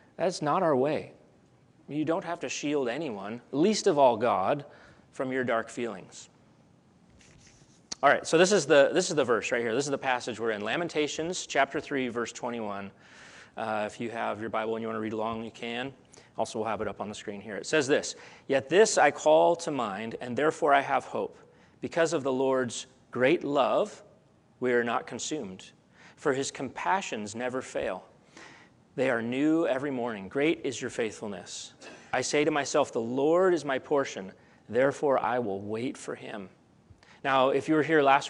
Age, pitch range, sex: 30-49, 115-150 Hz, male